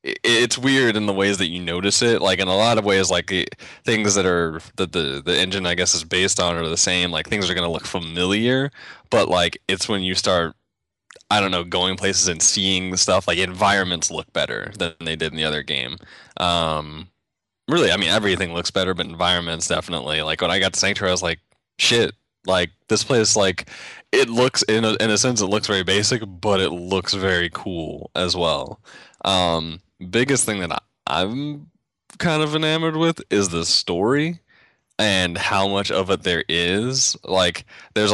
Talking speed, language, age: 200 wpm, English, 20-39